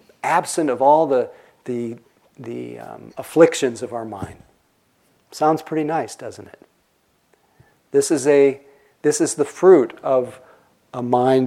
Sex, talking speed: male, 135 wpm